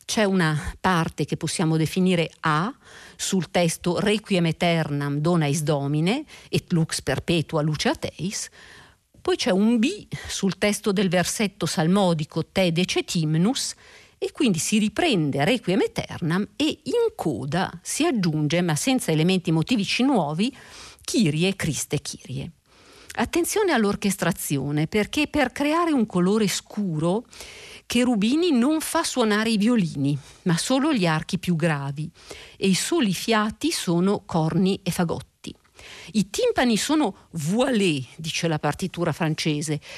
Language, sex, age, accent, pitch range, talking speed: Italian, female, 50-69, native, 160-225 Hz, 130 wpm